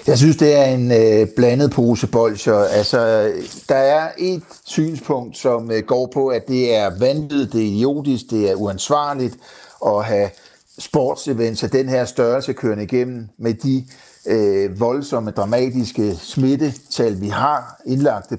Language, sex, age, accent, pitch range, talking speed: Danish, male, 60-79, native, 110-140 Hz, 145 wpm